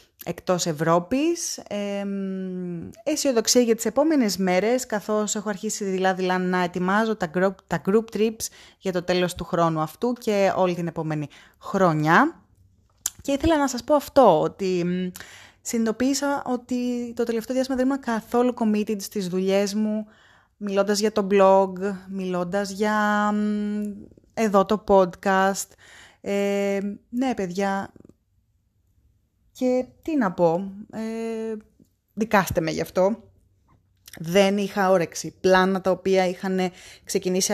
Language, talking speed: Greek, 125 wpm